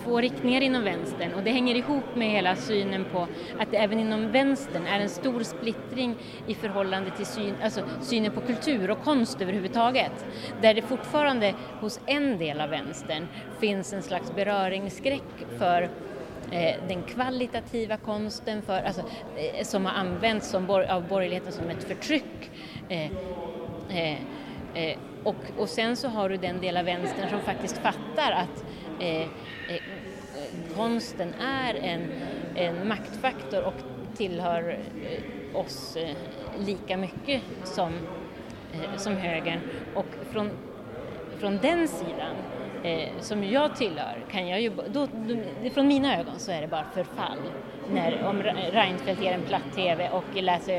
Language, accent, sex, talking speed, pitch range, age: English, Swedish, female, 150 wpm, 190-240 Hz, 30-49